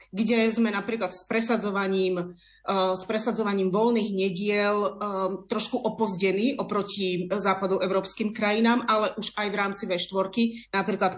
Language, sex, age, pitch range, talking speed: Slovak, female, 30-49, 190-235 Hz, 125 wpm